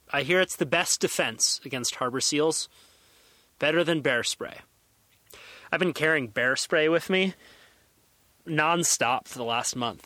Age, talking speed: 30-49, 150 wpm